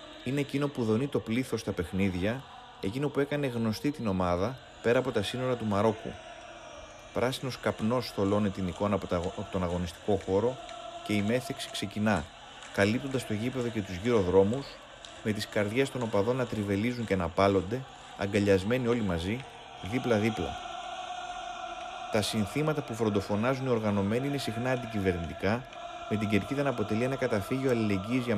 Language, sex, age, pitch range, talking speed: Greek, male, 30-49, 100-130 Hz, 155 wpm